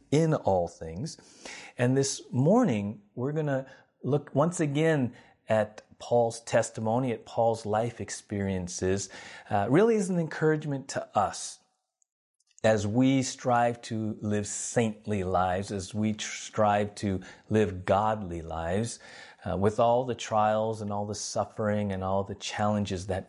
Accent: American